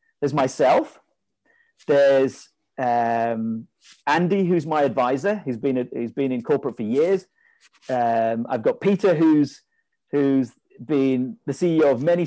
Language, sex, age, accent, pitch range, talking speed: English, male, 40-59, British, 130-205 Hz, 135 wpm